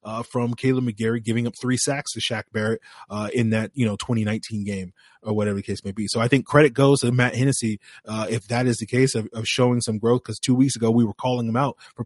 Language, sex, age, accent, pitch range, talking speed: English, male, 30-49, American, 110-130 Hz, 265 wpm